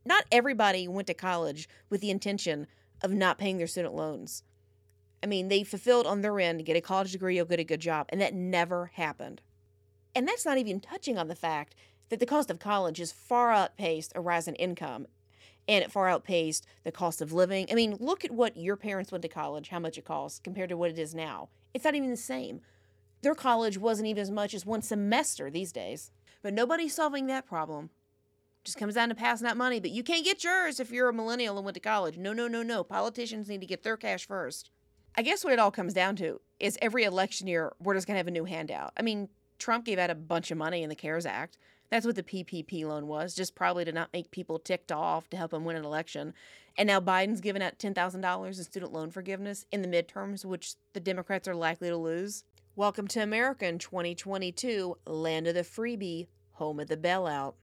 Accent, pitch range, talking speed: American, 165-210 Hz, 230 wpm